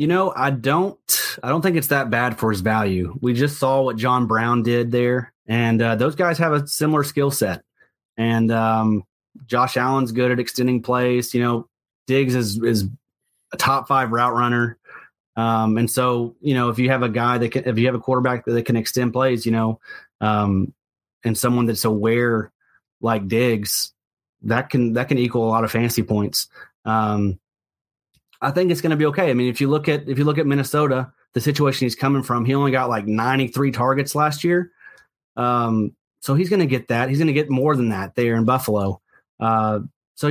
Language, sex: English, male